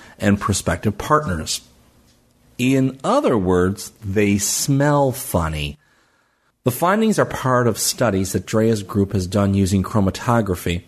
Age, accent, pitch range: 40-59, American, 95-120 Hz